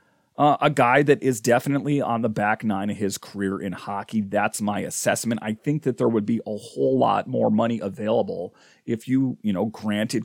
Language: English